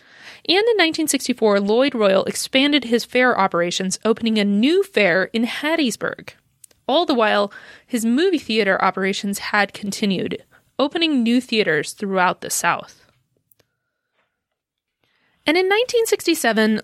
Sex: female